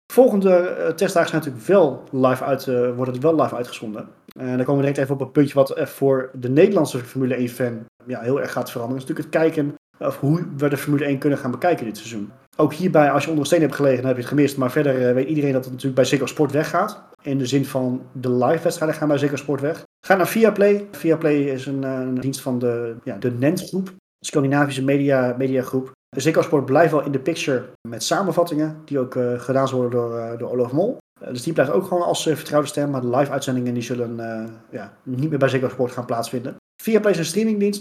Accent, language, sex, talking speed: Dutch, Dutch, male, 240 wpm